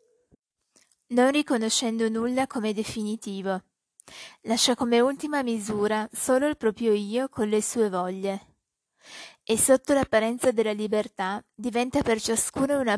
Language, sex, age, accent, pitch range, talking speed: Italian, female, 20-39, native, 210-245 Hz, 120 wpm